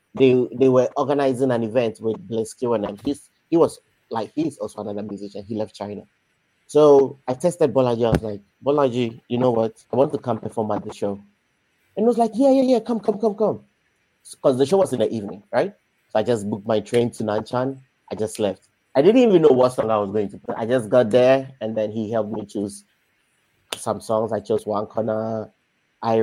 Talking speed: 225 wpm